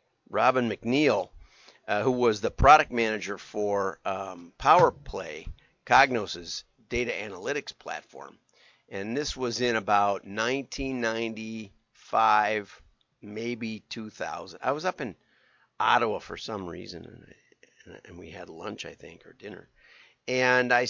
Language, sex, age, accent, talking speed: English, male, 50-69, American, 120 wpm